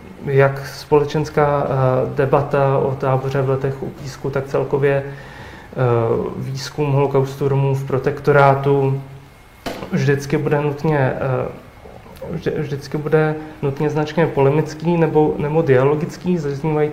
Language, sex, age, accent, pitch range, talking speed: Czech, male, 30-49, native, 135-150 Hz, 95 wpm